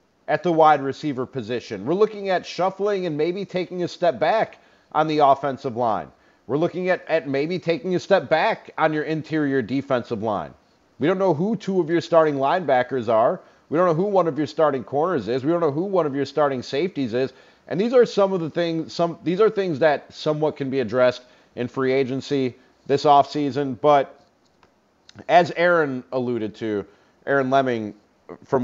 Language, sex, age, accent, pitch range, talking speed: English, male, 40-59, American, 125-160 Hz, 195 wpm